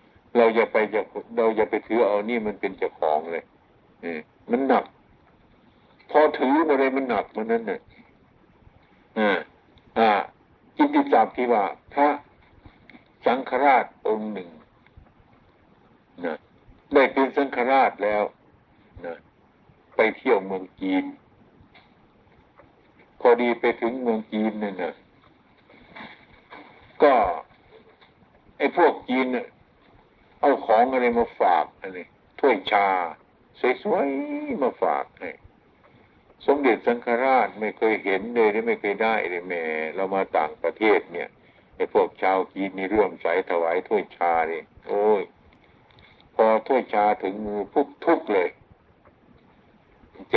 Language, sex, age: Thai, male, 60-79